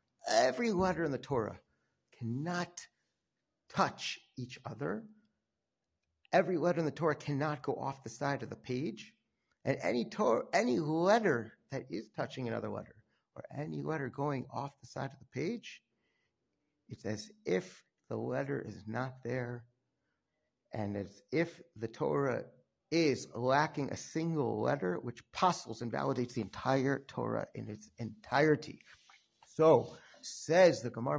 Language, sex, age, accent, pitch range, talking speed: English, male, 50-69, American, 115-160 Hz, 140 wpm